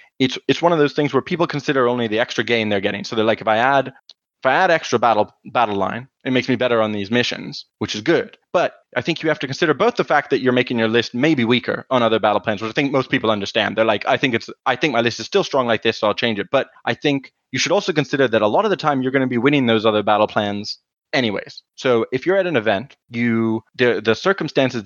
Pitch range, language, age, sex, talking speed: 110-130 Hz, English, 20-39, male, 280 wpm